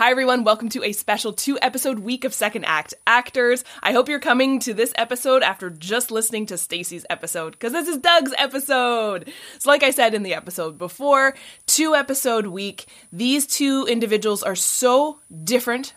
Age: 20-39